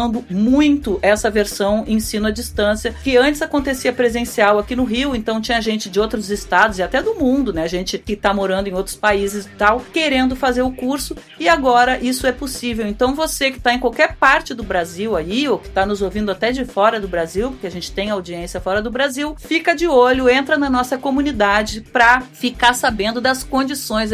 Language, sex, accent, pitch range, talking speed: Portuguese, female, Brazilian, 195-250 Hz, 205 wpm